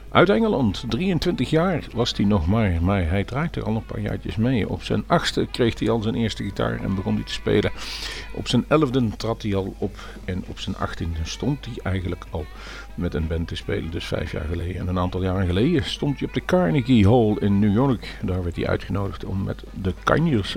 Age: 50-69